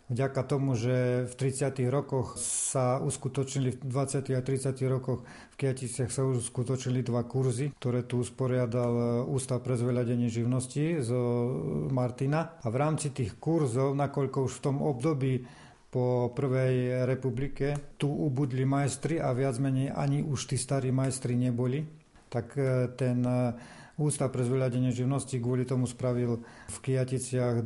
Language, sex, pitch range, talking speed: Slovak, male, 125-135 Hz, 140 wpm